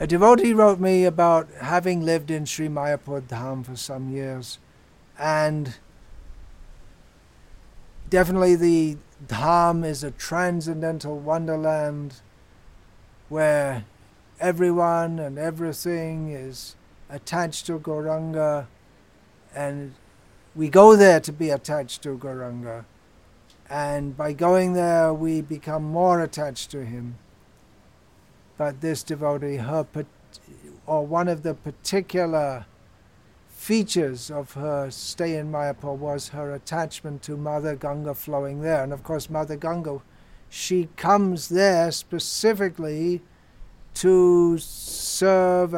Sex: male